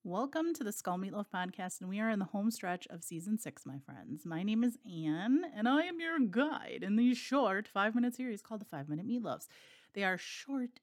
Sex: female